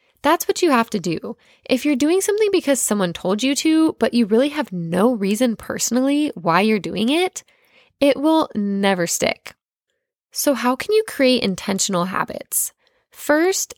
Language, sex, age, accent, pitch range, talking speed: English, female, 10-29, American, 210-300 Hz, 165 wpm